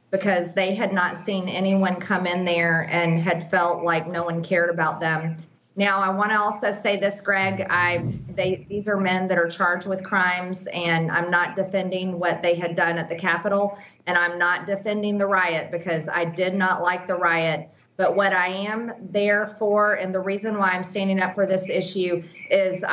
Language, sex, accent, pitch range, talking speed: English, female, American, 170-200 Hz, 200 wpm